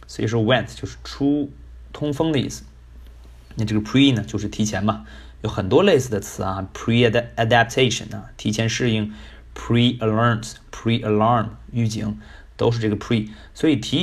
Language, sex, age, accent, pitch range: Chinese, male, 20-39, native, 105-125 Hz